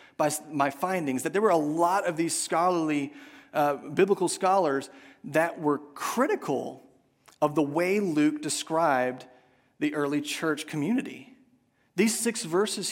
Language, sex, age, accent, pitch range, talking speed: English, male, 30-49, American, 150-195 Hz, 130 wpm